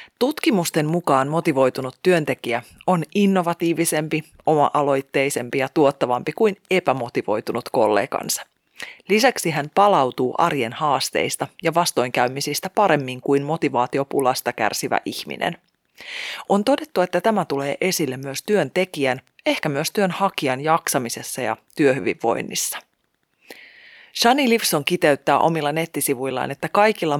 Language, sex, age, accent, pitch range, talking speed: Finnish, female, 30-49, native, 140-205 Hz, 100 wpm